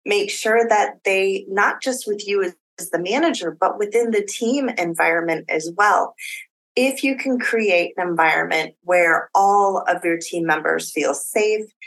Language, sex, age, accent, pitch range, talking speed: English, female, 30-49, American, 165-230 Hz, 160 wpm